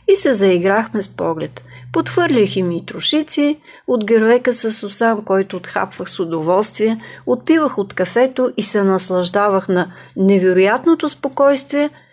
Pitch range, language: 185-255 Hz, English